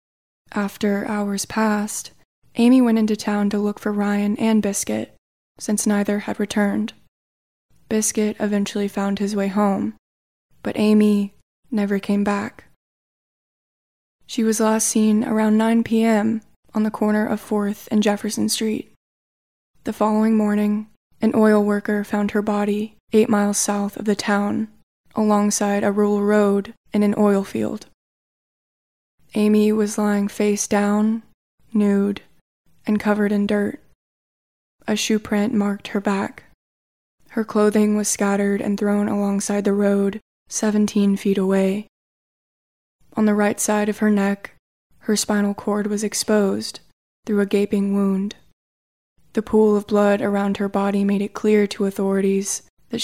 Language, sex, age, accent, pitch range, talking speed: English, female, 20-39, American, 200-215 Hz, 140 wpm